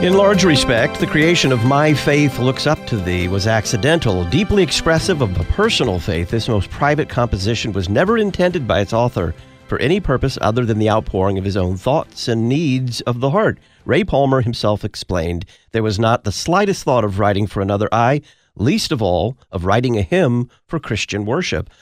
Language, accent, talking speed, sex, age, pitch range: English, American, 195 wpm, male, 50-69, 100-135 Hz